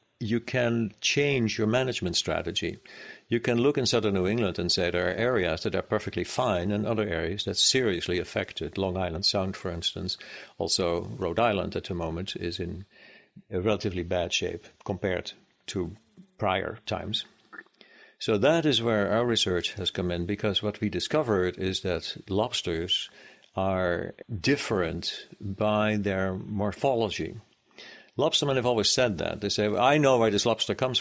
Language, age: English, 60-79